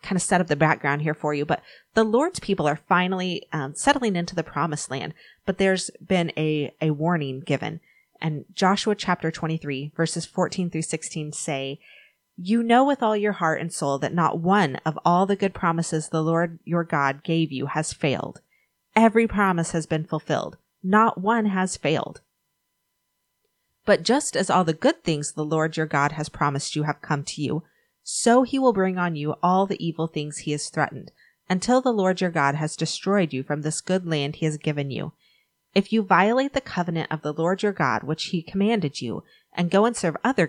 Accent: American